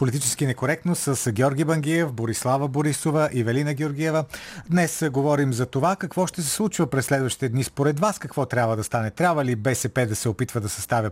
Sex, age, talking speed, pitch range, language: male, 40-59, 190 wpm, 120-160 Hz, Bulgarian